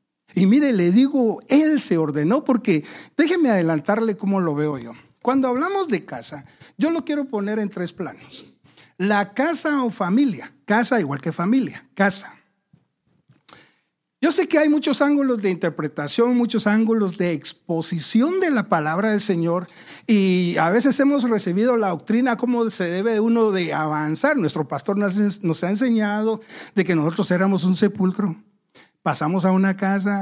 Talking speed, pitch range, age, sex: 155 wpm, 165-240 Hz, 60-79, male